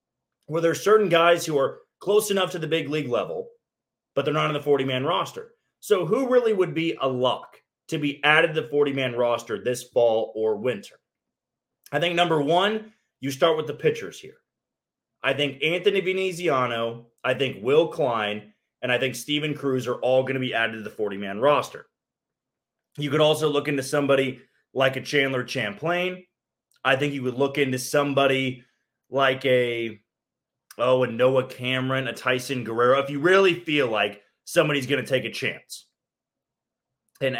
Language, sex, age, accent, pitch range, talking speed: English, male, 30-49, American, 125-165 Hz, 180 wpm